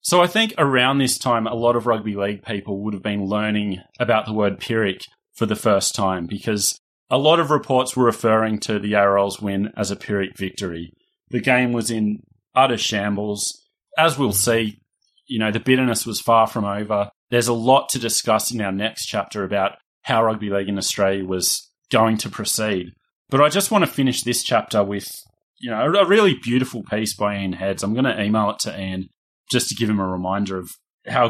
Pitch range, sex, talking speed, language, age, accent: 105-130 Hz, male, 205 wpm, English, 30-49, Australian